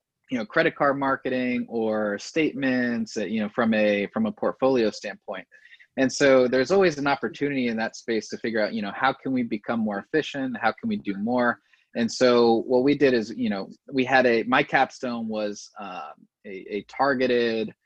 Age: 20-39